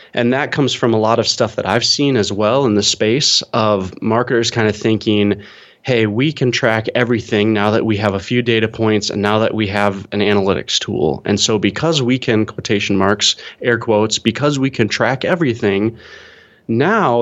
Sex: male